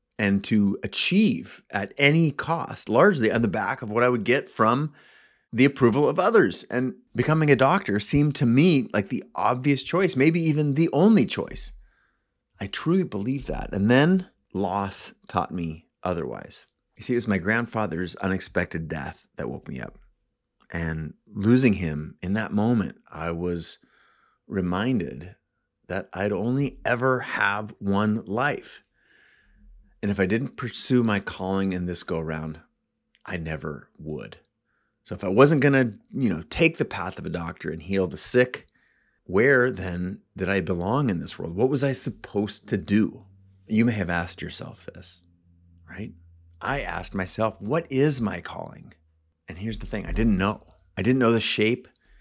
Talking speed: 170 wpm